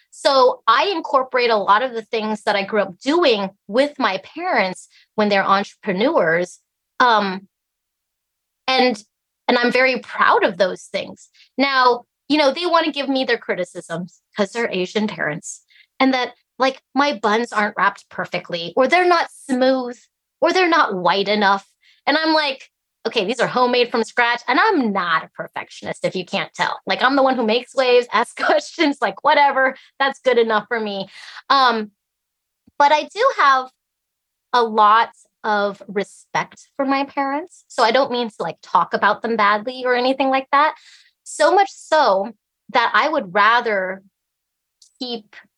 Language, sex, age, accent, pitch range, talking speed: English, female, 20-39, American, 205-275 Hz, 165 wpm